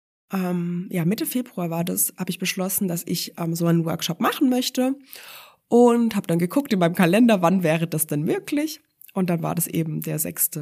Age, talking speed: 20-39, 205 wpm